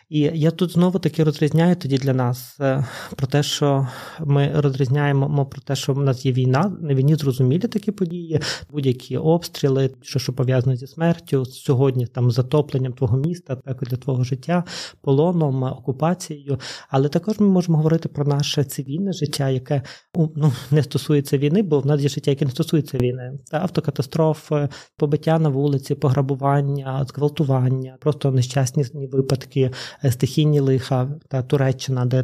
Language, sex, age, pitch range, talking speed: Ukrainian, male, 20-39, 130-150 Hz, 155 wpm